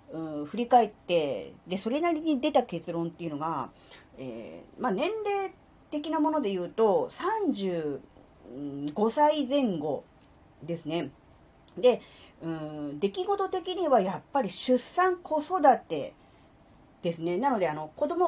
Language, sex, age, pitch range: Japanese, female, 40-59, 170-280 Hz